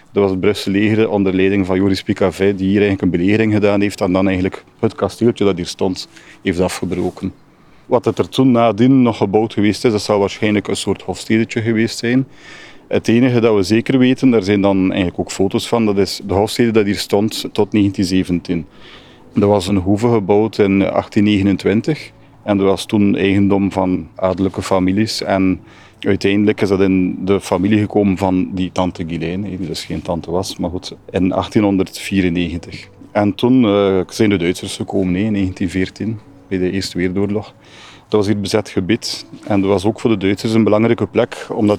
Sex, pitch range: male, 95-110 Hz